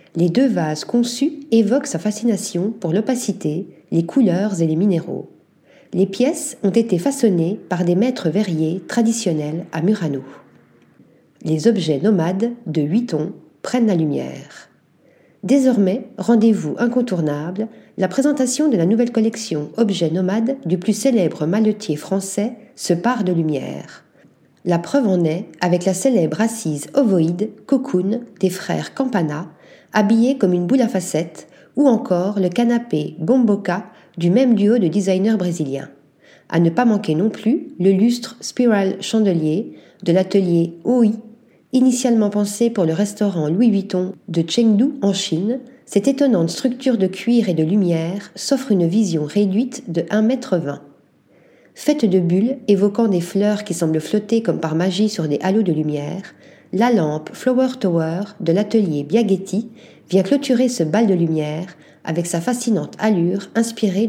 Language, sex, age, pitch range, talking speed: French, female, 40-59, 175-230 Hz, 150 wpm